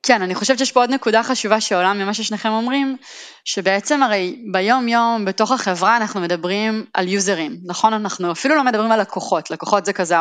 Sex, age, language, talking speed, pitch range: female, 20-39, Hebrew, 180 wpm, 185-250 Hz